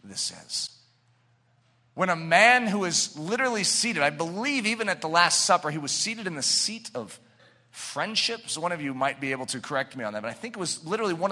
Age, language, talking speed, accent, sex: 40-59, English, 230 wpm, American, male